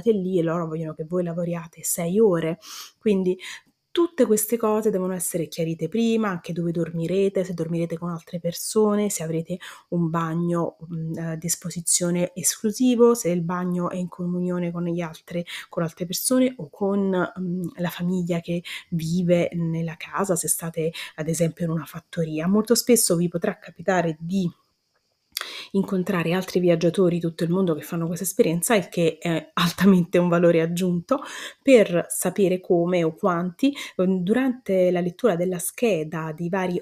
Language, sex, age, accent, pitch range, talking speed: Italian, female, 30-49, native, 170-195 Hz, 160 wpm